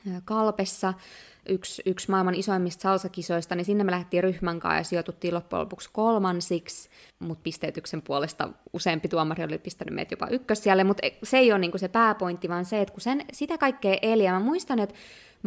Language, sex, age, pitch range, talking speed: Finnish, female, 20-39, 170-215 Hz, 180 wpm